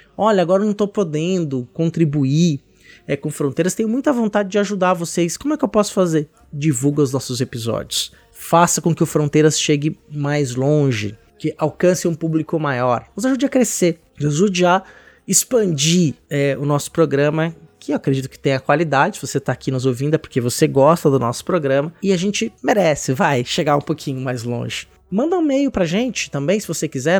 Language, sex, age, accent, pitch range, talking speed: Portuguese, male, 20-39, Brazilian, 145-195 Hz, 195 wpm